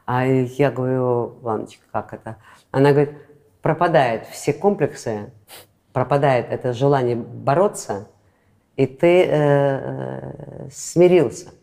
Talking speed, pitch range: 105 wpm, 125-190 Hz